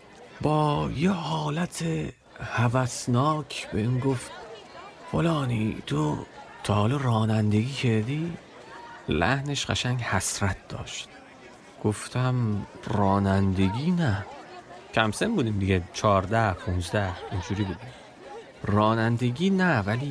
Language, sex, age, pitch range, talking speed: Persian, male, 40-59, 100-125 Hz, 90 wpm